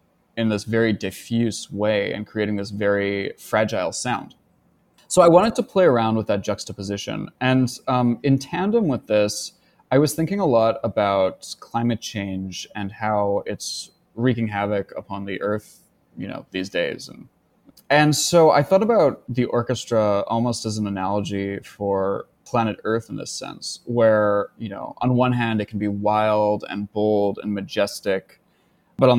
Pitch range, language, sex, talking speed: 105-125 Hz, English, male, 165 wpm